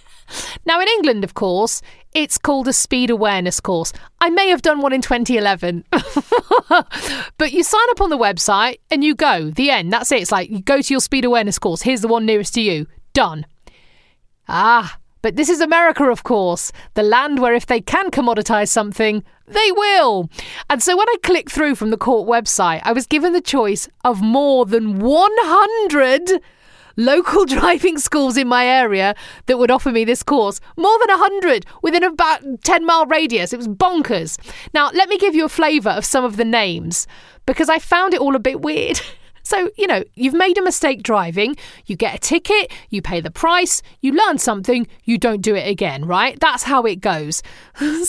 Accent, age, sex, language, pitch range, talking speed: British, 40-59, female, English, 230-350 Hz, 195 wpm